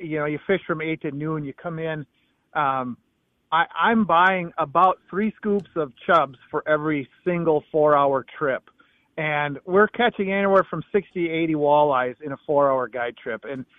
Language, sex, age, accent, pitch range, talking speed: English, male, 40-59, American, 145-185 Hz, 180 wpm